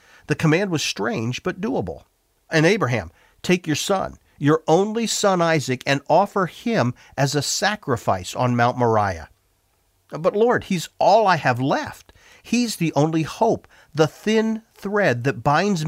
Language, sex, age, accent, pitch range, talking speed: English, male, 50-69, American, 120-170 Hz, 150 wpm